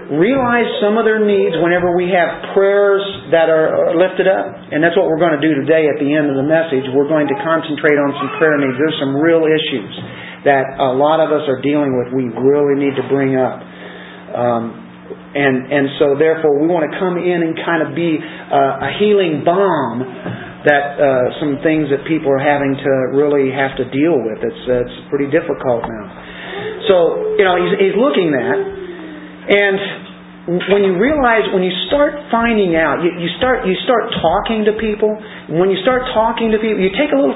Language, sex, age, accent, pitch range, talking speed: English, male, 40-59, American, 140-195 Hz, 200 wpm